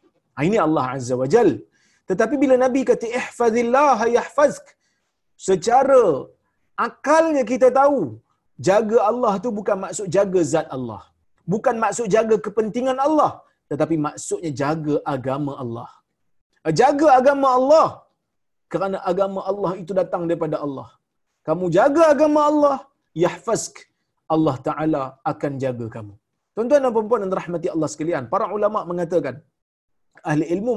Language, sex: Malayalam, male